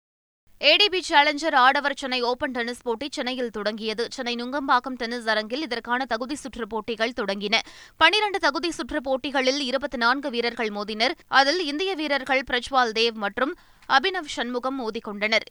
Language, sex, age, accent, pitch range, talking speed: Tamil, female, 20-39, native, 225-280 Hz, 135 wpm